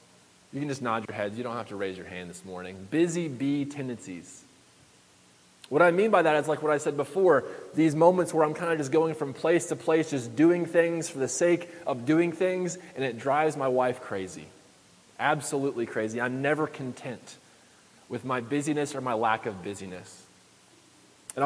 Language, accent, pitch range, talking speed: English, American, 120-165 Hz, 195 wpm